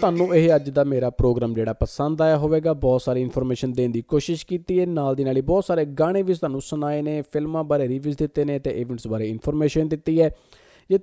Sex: male